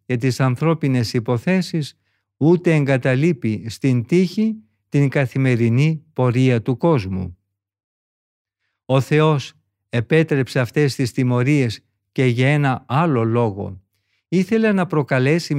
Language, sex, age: Greek, male, 50-69